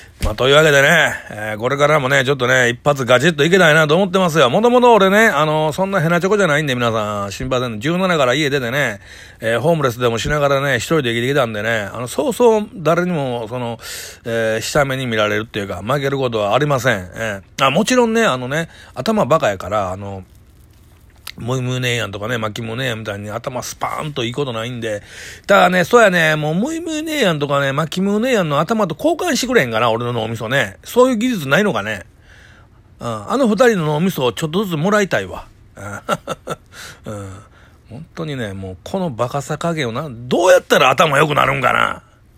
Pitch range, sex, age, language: 110-180 Hz, male, 40-59, Japanese